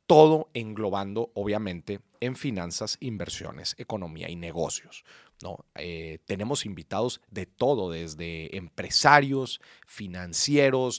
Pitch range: 95-135 Hz